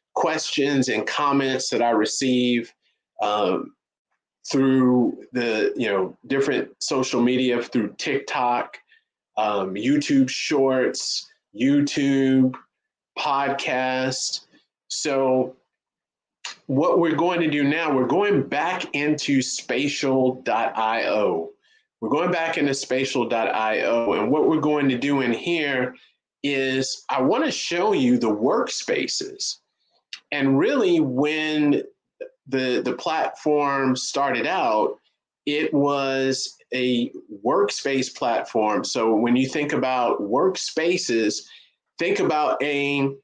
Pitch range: 125-150 Hz